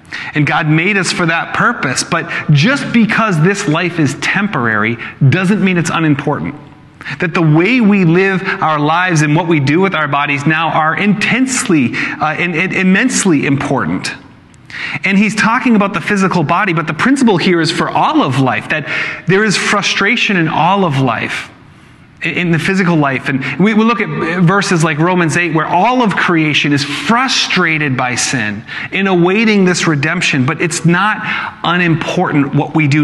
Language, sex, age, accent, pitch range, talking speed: English, male, 30-49, American, 150-195 Hz, 175 wpm